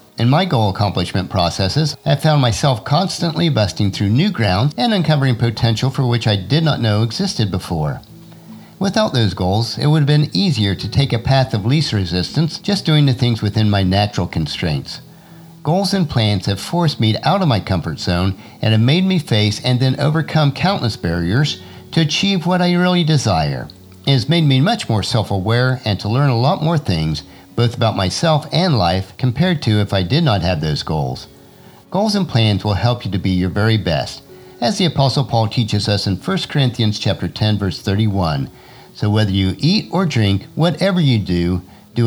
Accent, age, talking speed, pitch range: American, 50-69, 195 wpm, 100-150 Hz